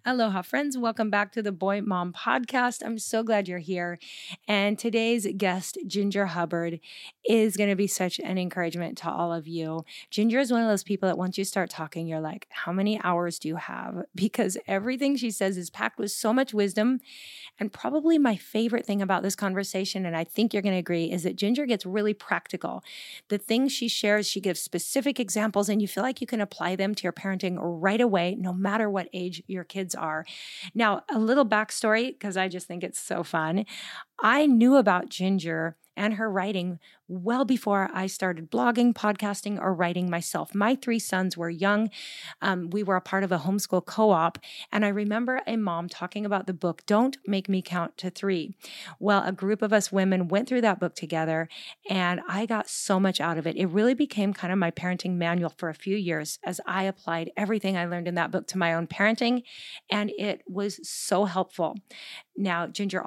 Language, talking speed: English, 205 wpm